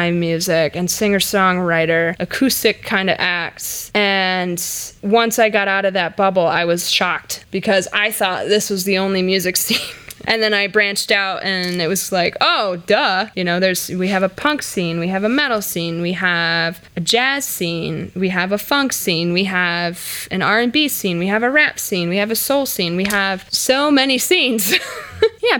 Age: 20-39